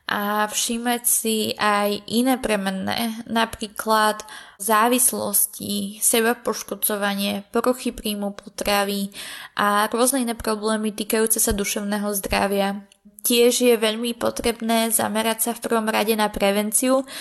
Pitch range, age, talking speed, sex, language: 215-240 Hz, 20-39, 110 wpm, female, Slovak